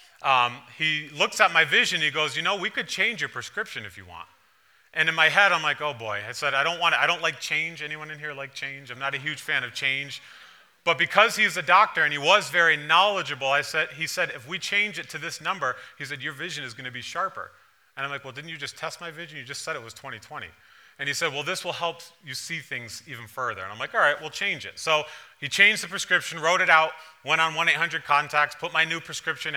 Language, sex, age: English, male, 30-49